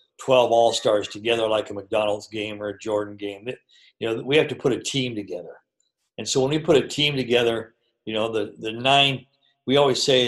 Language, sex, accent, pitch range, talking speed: English, male, American, 110-140 Hz, 210 wpm